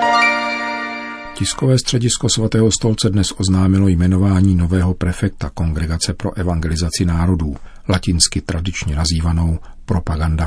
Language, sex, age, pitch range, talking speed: Czech, male, 50-69, 80-95 Hz, 95 wpm